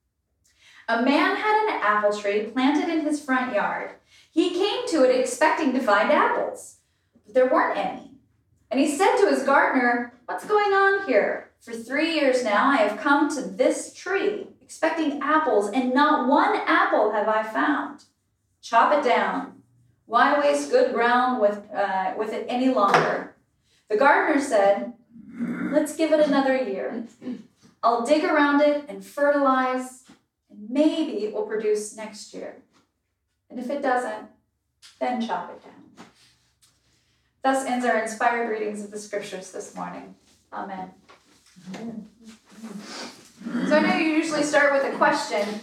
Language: English